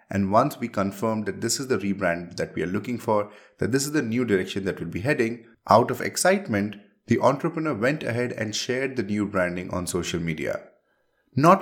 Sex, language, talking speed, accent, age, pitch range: male, English, 205 wpm, Indian, 30-49, 100-130 Hz